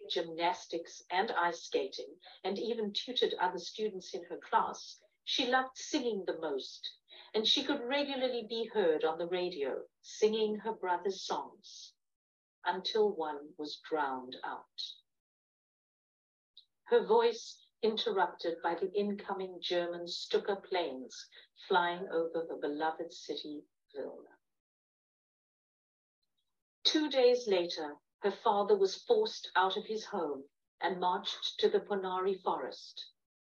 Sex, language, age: female, English, 50-69